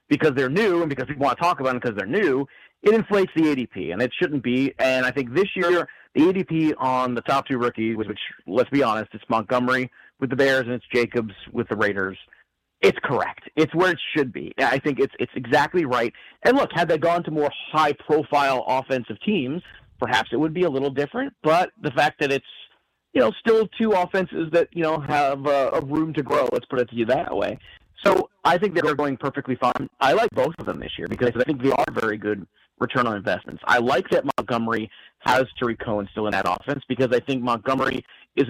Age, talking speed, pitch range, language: 40-59, 225 wpm, 120-155 Hz, English